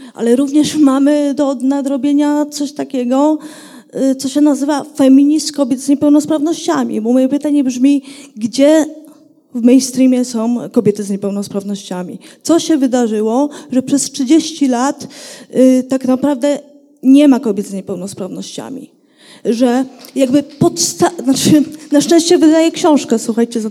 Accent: native